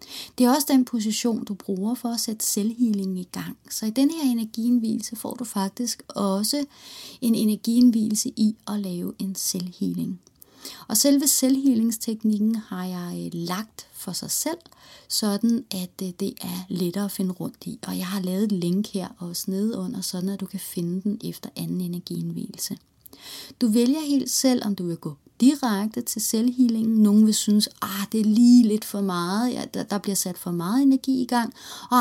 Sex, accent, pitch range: female, native, 195-245 Hz